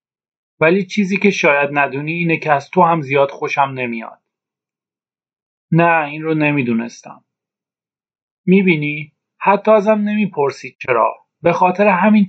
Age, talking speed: 40-59, 120 wpm